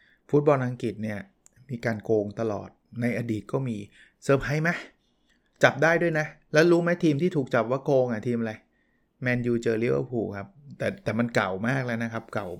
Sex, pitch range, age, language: male, 110-135 Hz, 20-39, Thai